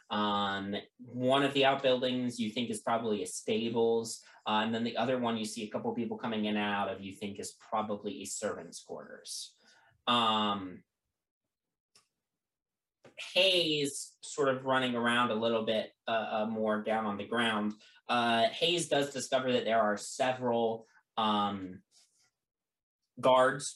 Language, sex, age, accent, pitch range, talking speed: English, male, 20-39, American, 105-145 Hz, 150 wpm